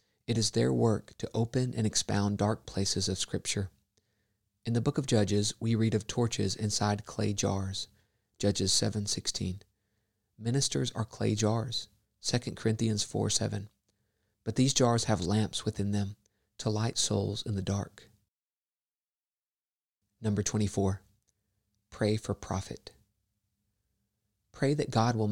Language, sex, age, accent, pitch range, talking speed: English, male, 40-59, American, 100-115 Hz, 130 wpm